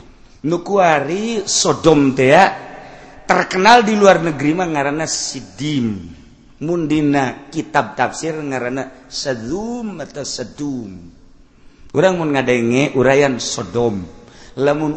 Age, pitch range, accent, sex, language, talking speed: 50-69, 115-145 Hz, native, male, Indonesian, 80 wpm